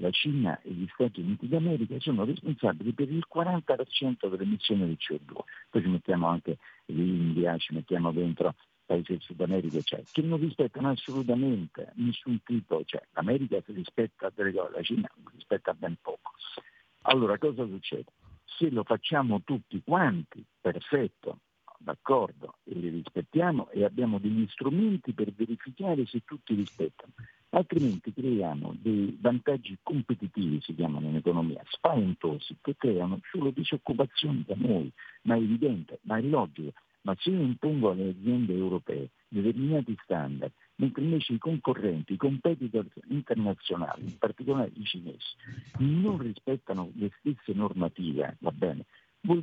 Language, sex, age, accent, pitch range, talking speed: Italian, male, 50-69, native, 95-140 Hz, 140 wpm